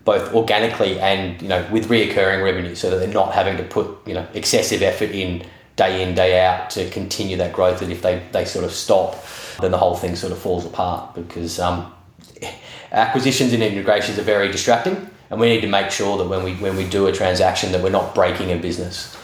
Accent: Australian